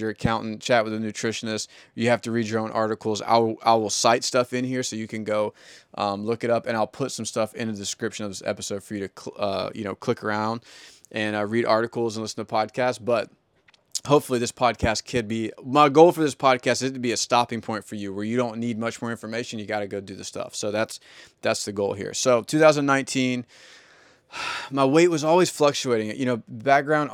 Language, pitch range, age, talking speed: English, 110-130 Hz, 20-39, 240 wpm